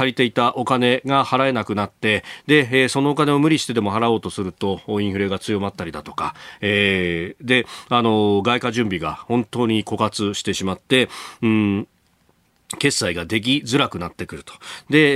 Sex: male